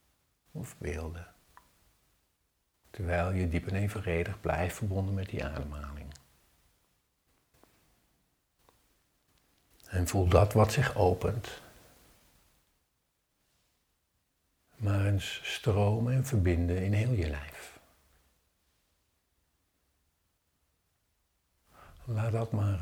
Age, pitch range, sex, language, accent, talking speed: 60-79, 80-100 Hz, male, Dutch, Dutch, 80 wpm